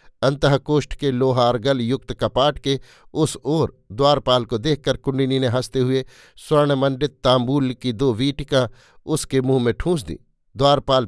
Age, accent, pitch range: 50-69, native, 125-145 Hz